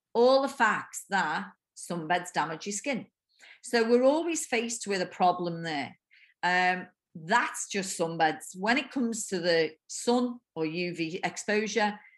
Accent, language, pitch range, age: British, English, 165-220 Hz, 40-59